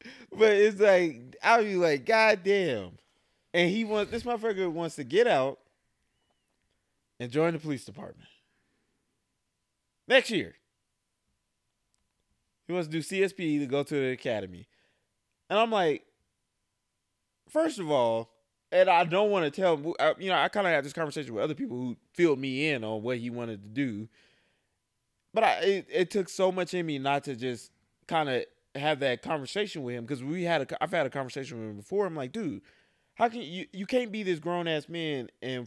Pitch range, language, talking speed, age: 135-205 Hz, English, 185 wpm, 20-39